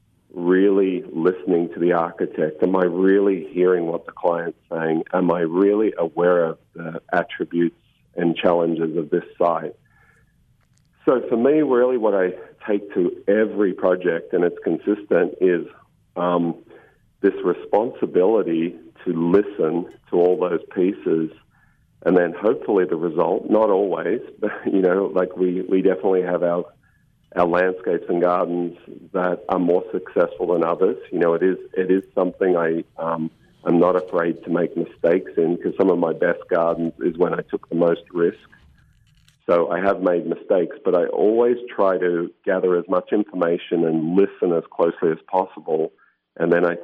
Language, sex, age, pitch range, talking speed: English, male, 50-69, 85-95 Hz, 160 wpm